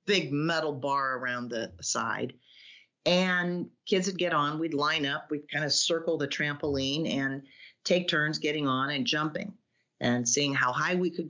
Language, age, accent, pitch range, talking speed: English, 50-69, American, 140-175 Hz, 175 wpm